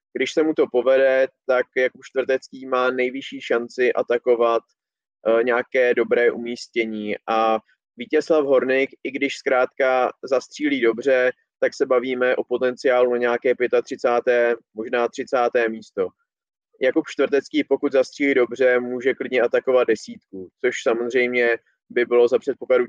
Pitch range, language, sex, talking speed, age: 120-150 Hz, Czech, male, 130 wpm, 20-39